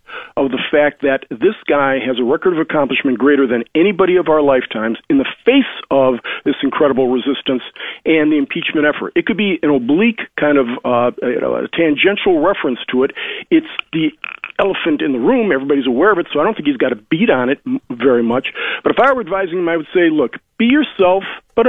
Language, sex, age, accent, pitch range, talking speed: English, male, 50-69, American, 145-240 Hz, 215 wpm